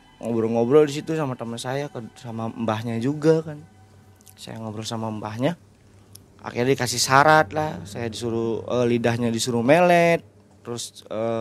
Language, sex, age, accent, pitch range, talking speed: Indonesian, male, 30-49, native, 110-150 Hz, 135 wpm